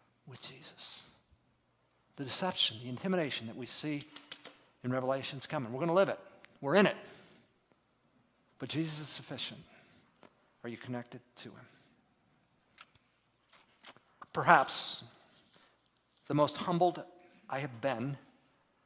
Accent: American